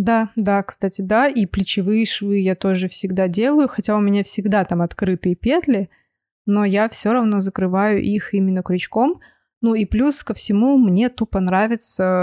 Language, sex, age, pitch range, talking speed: Russian, female, 20-39, 185-215 Hz, 165 wpm